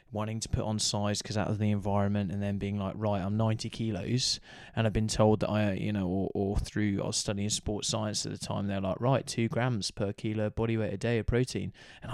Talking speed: 250 wpm